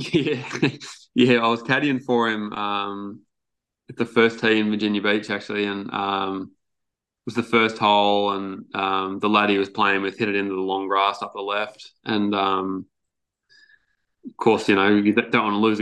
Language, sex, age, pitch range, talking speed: English, male, 20-39, 100-110 Hz, 195 wpm